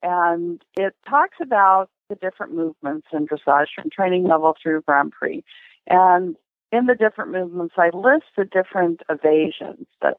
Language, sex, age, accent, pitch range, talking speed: English, female, 50-69, American, 160-190 Hz, 155 wpm